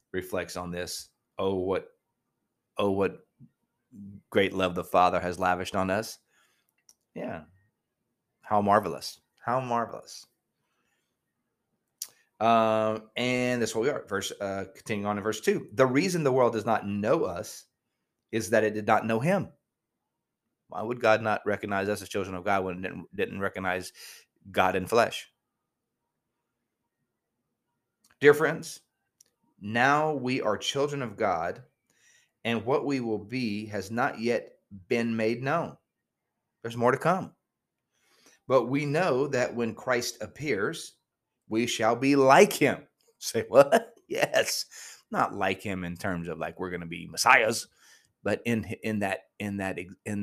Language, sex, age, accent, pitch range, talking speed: English, male, 30-49, American, 95-120 Hz, 145 wpm